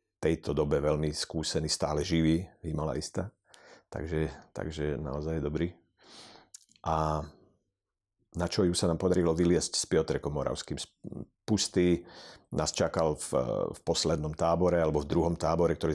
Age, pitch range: 50-69, 80-90 Hz